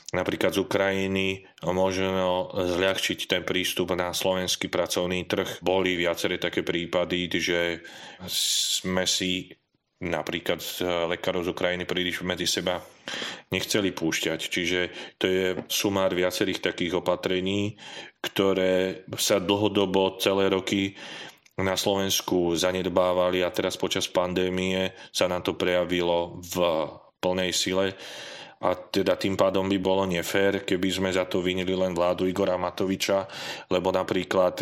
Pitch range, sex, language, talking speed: 90-95 Hz, male, Slovak, 125 wpm